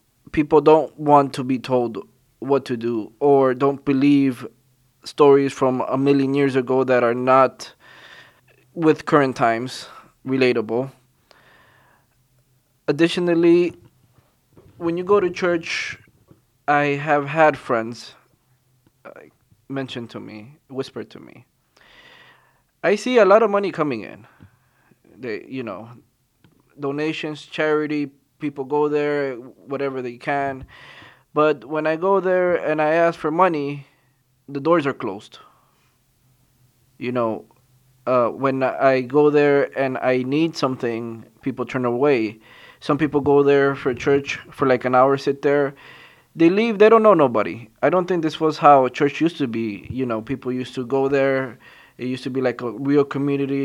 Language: English